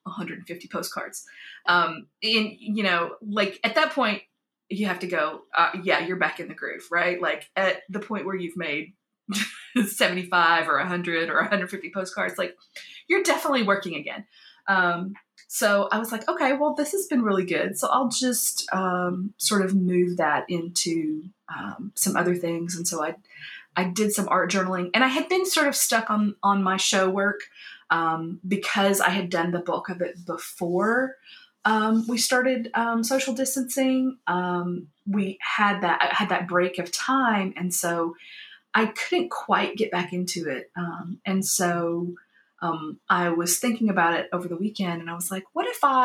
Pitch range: 175-225 Hz